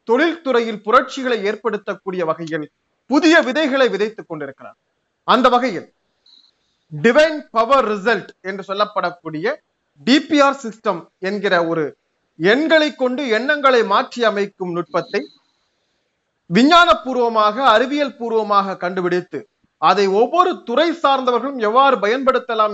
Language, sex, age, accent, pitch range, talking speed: Tamil, male, 30-49, native, 200-270 Hz, 75 wpm